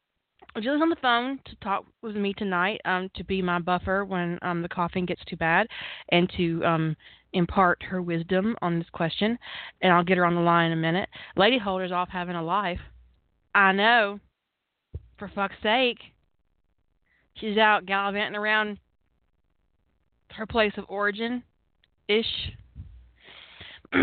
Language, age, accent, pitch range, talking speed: English, 20-39, American, 175-225 Hz, 150 wpm